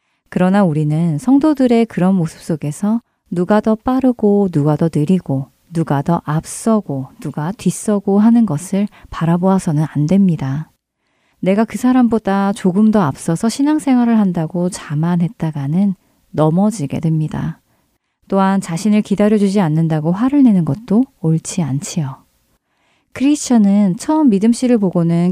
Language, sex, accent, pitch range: Korean, female, native, 165-220 Hz